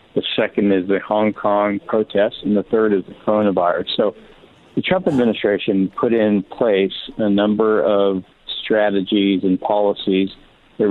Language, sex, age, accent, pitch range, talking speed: English, male, 50-69, American, 95-105 Hz, 150 wpm